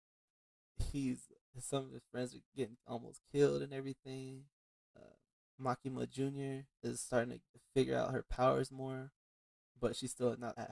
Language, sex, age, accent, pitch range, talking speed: English, male, 20-39, American, 110-130 Hz, 150 wpm